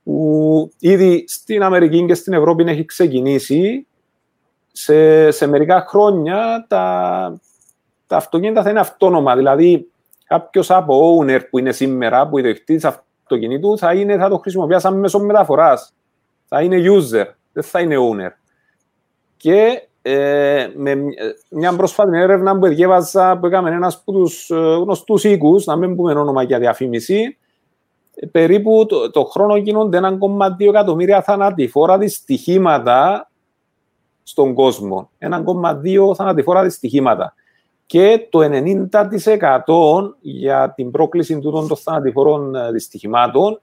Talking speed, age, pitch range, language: 120 wpm, 40-59, 155-200 Hz, English